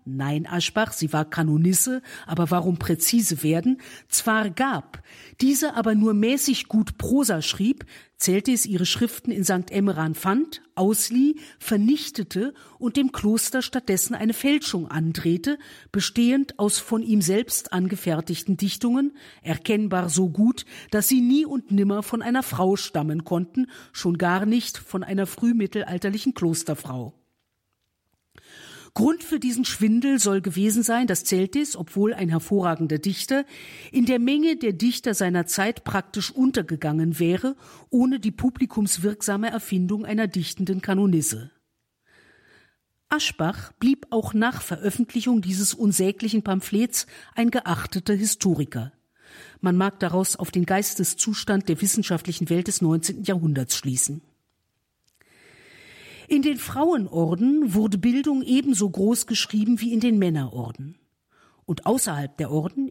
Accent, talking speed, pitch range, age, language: German, 125 wpm, 175-245 Hz, 50-69, German